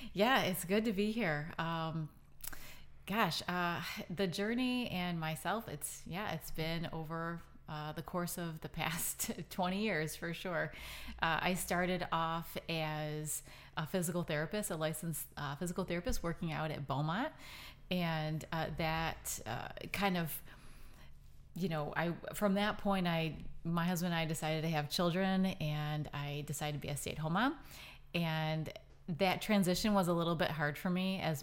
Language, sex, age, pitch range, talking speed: English, female, 30-49, 155-180 Hz, 160 wpm